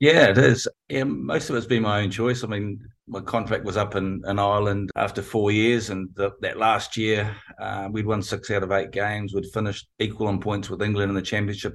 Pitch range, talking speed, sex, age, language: 100-110 Hz, 225 wpm, male, 30-49, English